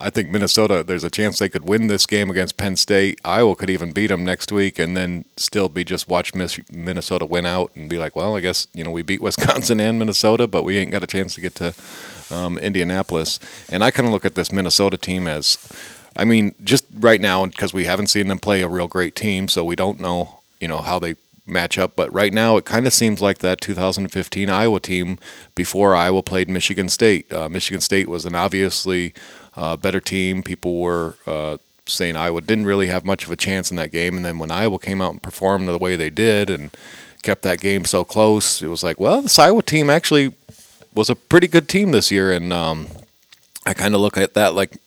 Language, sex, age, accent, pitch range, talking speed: English, male, 40-59, American, 90-105 Hz, 230 wpm